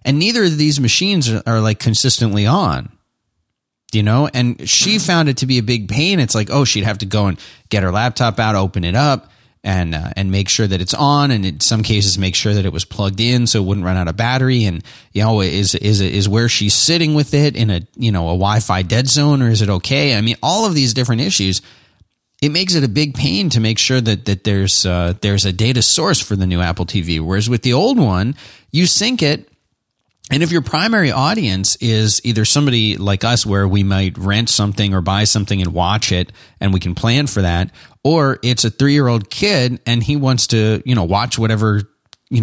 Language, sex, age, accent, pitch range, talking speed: English, male, 30-49, American, 100-135 Hz, 230 wpm